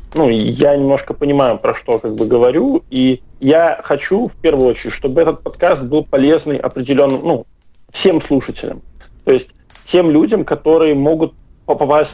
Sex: male